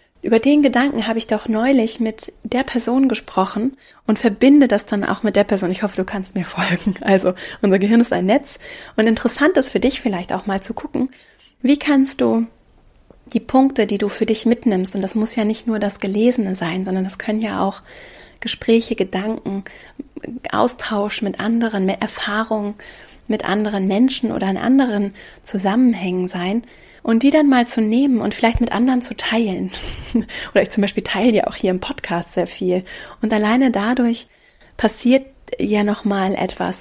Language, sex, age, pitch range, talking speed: German, female, 30-49, 200-235 Hz, 180 wpm